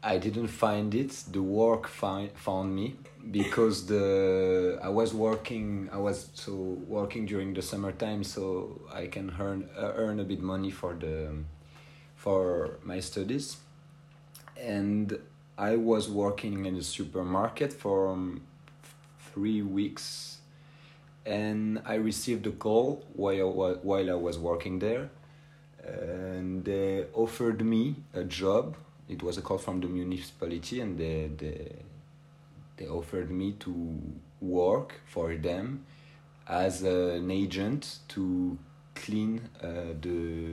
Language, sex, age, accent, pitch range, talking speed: English, male, 30-49, French, 85-110 Hz, 125 wpm